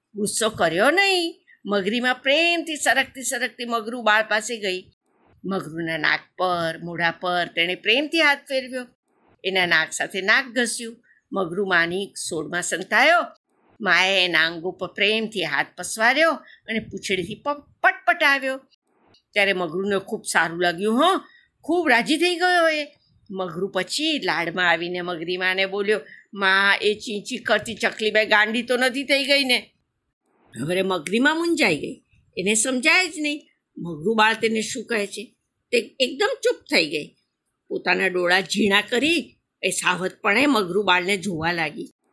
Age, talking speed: 50-69, 100 wpm